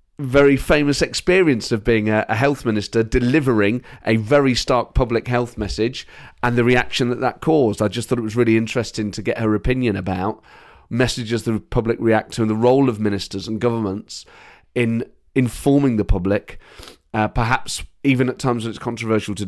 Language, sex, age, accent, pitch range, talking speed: English, male, 30-49, British, 110-140 Hz, 180 wpm